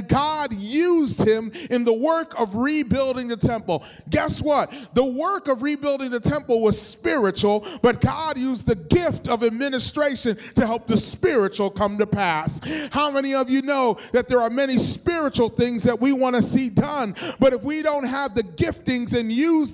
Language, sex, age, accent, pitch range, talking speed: English, male, 30-49, American, 175-260 Hz, 180 wpm